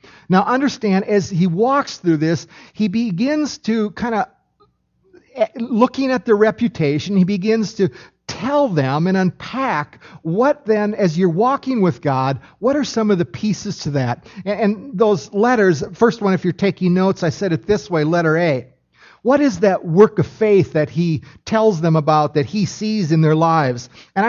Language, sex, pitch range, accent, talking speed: English, male, 155-220 Hz, American, 180 wpm